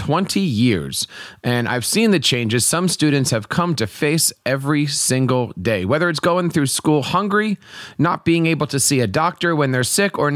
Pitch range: 130-180 Hz